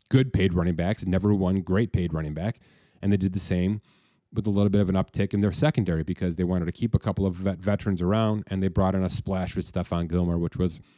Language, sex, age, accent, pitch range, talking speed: English, male, 30-49, American, 95-115 Hz, 250 wpm